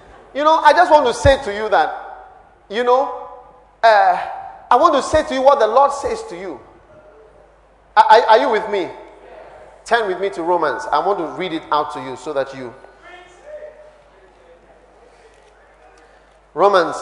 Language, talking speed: English, 165 wpm